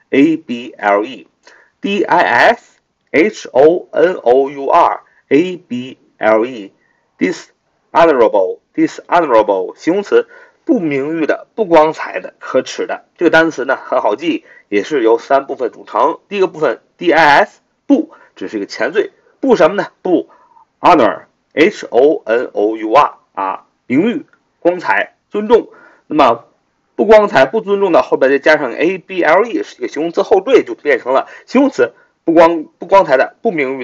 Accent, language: native, Chinese